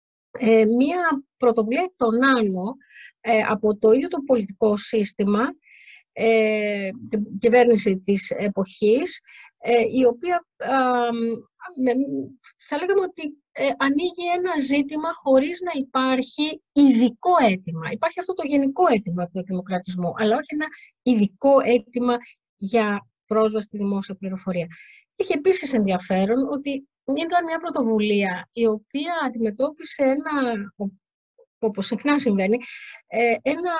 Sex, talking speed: female, 115 wpm